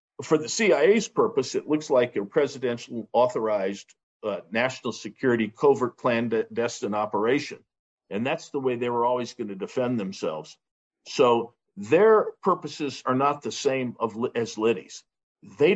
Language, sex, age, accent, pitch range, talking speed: English, male, 50-69, American, 115-155 Hz, 135 wpm